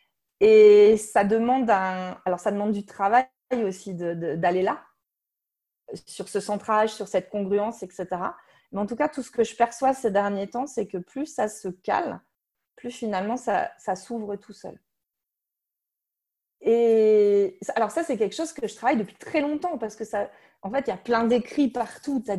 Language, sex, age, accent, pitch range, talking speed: French, female, 30-49, French, 195-250 Hz, 190 wpm